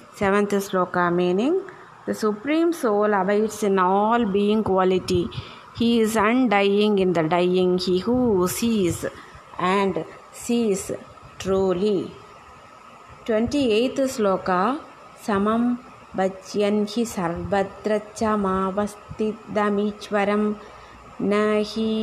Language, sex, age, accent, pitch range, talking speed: Tamil, female, 20-39, native, 190-220 Hz, 85 wpm